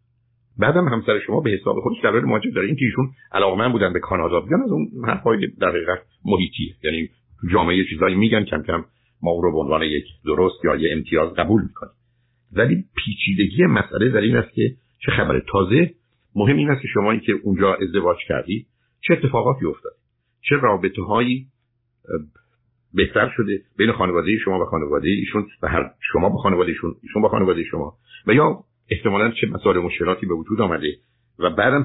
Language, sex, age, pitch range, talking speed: Persian, male, 50-69, 95-125 Hz, 175 wpm